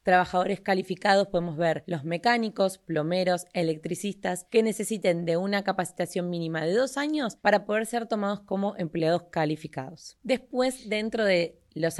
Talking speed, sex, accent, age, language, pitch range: 140 wpm, female, Argentinian, 20-39, Spanish, 175-225 Hz